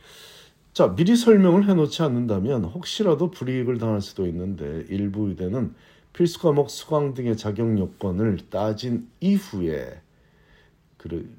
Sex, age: male, 40-59